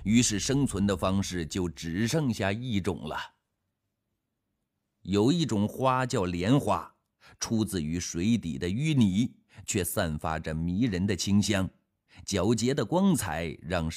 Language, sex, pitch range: Chinese, male, 90-115 Hz